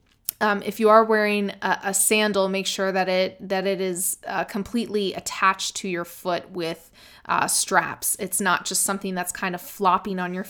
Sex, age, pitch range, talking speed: female, 20-39, 185-220 Hz, 195 wpm